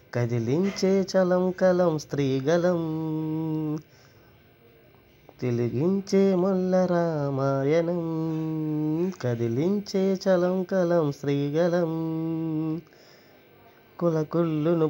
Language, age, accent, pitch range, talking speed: Telugu, 20-39, native, 140-170 Hz, 40 wpm